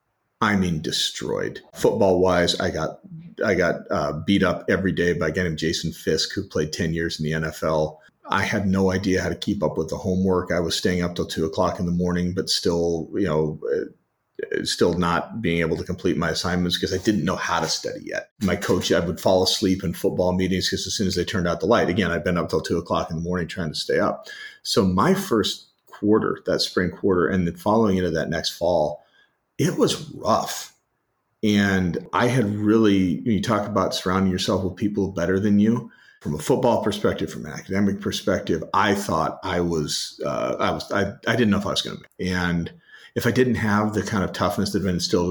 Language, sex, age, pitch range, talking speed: English, male, 30-49, 85-100 Hz, 225 wpm